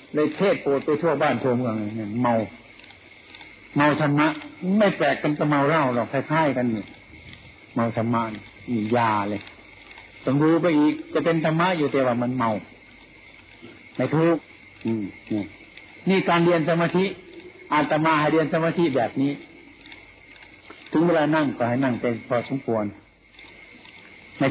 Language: Thai